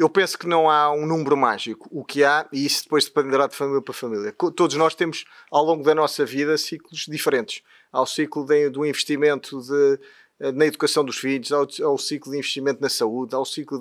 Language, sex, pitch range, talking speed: Portuguese, male, 140-160 Hz, 210 wpm